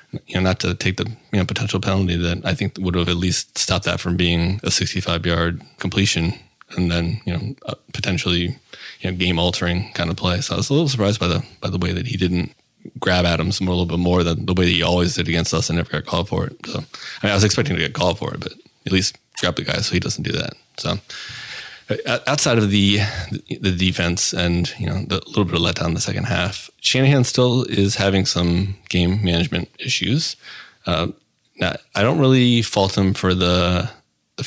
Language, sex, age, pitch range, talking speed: English, male, 20-39, 85-100 Hz, 220 wpm